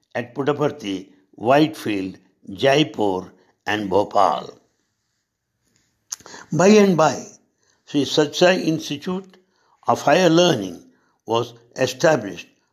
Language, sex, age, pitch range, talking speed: English, male, 60-79, 125-165 Hz, 80 wpm